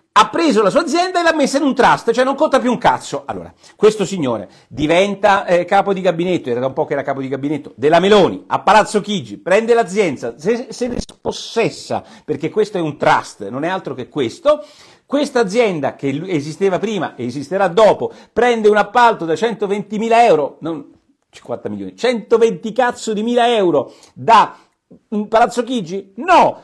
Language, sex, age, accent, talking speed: Italian, male, 50-69, native, 185 wpm